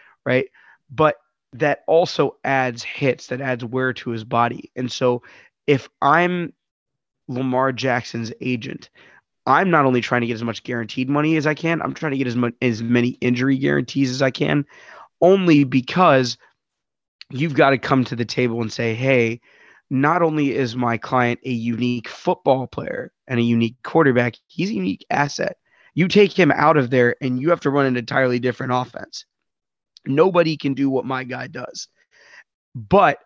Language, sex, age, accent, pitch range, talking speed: English, male, 20-39, American, 120-140 Hz, 175 wpm